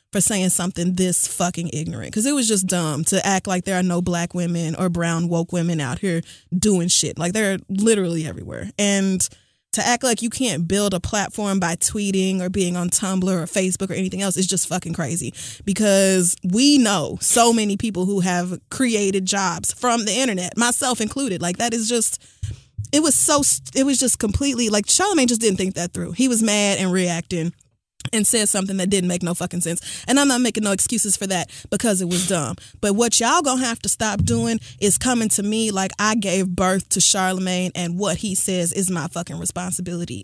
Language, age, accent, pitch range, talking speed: English, 20-39, American, 175-215 Hz, 210 wpm